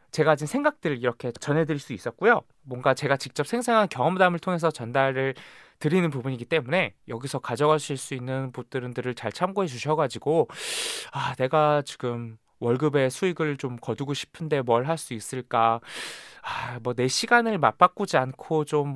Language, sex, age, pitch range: Korean, male, 20-39, 125-175 Hz